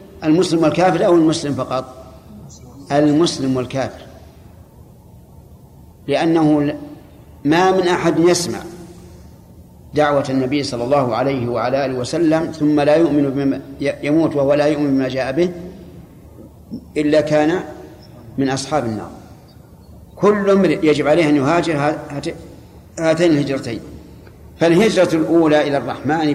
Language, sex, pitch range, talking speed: Arabic, male, 135-165 Hz, 110 wpm